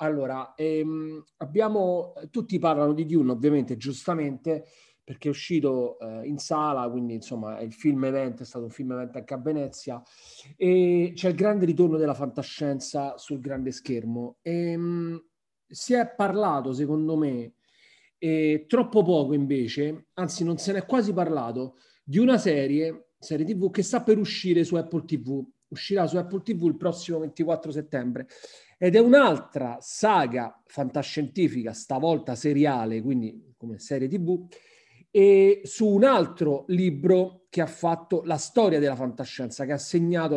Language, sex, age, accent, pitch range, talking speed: Italian, male, 40-59, native, 140-185 Hz, 150 wpm